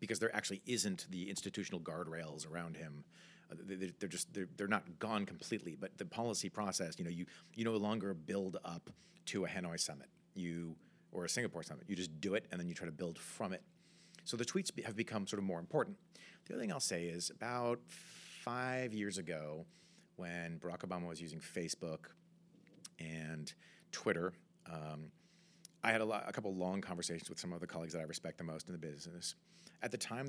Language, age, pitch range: English, 40-59, 85-145 Hz